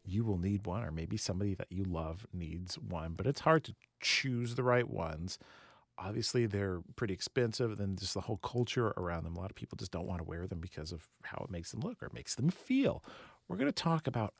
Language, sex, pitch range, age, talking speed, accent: English, male, 95-130 Hz, 40-59, 240 wpm, American